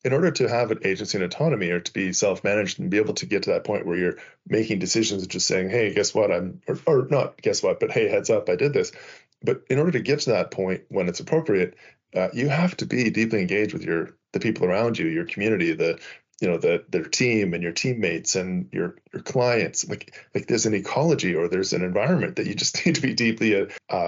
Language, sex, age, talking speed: English, male, 20-39, 250 wpm